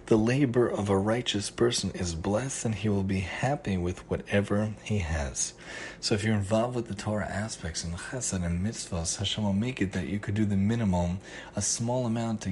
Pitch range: 95-115 Hz